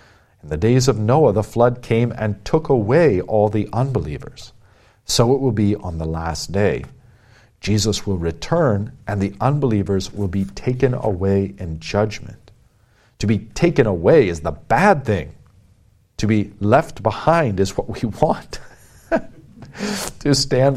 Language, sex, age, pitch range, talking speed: English, male, 40-59, 100-125 Hz, 150 wpm